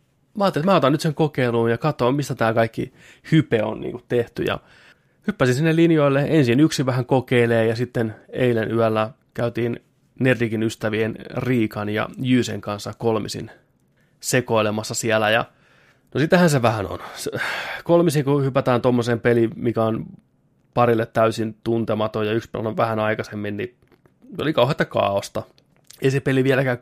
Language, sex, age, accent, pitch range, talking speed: Finnish, male, 20-39, native, 110-125 Hz, 150 wpm